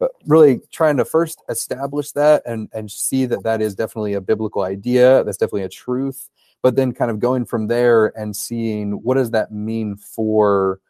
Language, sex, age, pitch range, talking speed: English, male, 30-49, 105-125 Hz, 195 wpm